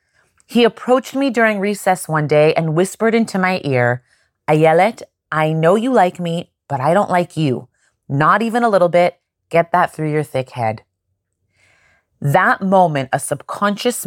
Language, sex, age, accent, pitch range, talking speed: English, female, 30-49, American, 150-220 Hz, 160 wpm